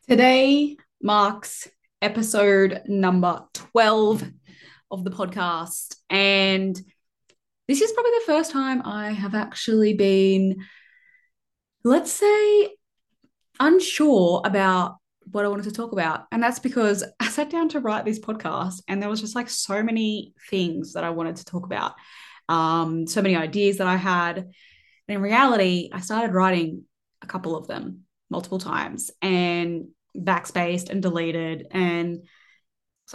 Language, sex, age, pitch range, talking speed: English, female, 20-39, 180-235 Hz, 140 wpm